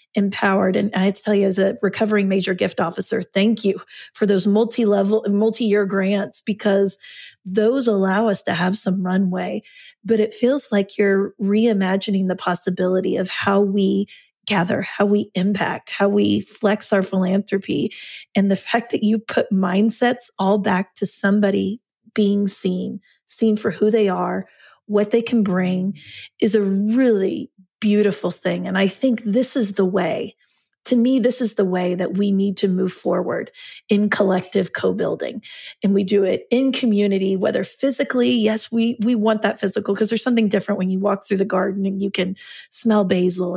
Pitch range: 195-220 Hz